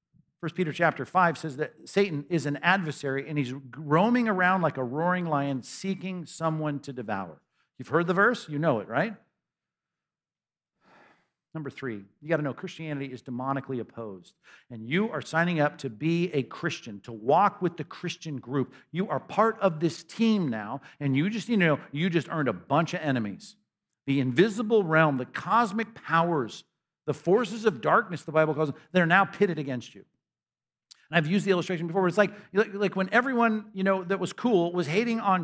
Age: 50-69